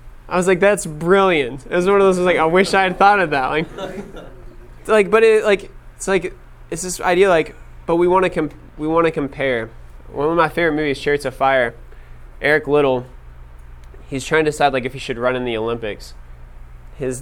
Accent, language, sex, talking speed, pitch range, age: American, English, male, 215 wpm, 110-150 Hz, 20-39